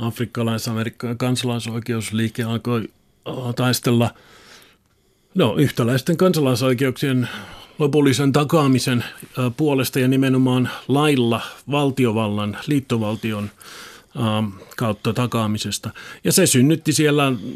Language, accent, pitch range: Finnish, native, 115-140 Hz